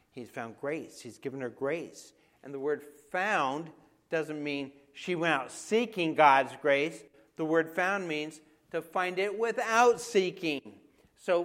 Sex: male